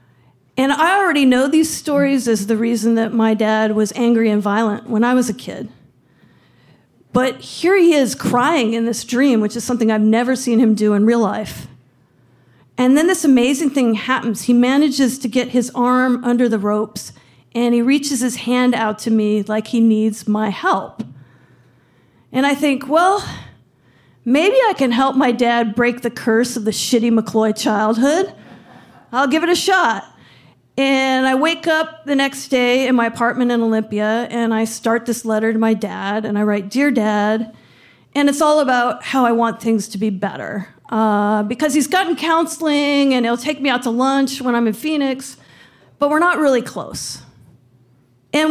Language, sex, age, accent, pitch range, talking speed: English, female, 50-69, American, 220-275 Hz, 185 wpm